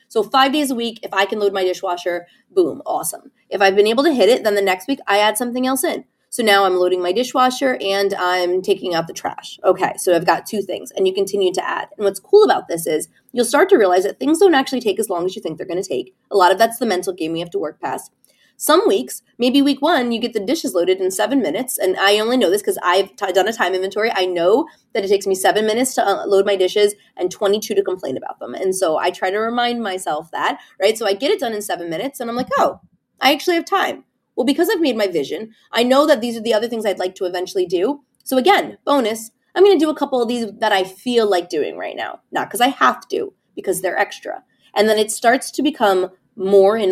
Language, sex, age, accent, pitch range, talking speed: English, female, 20-39, American, 190-270 Hz, 265 wpm